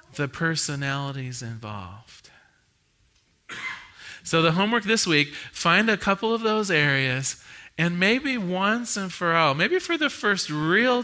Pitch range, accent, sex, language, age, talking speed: 135-190 Hz, American, male, English, 40-59, 135 wpm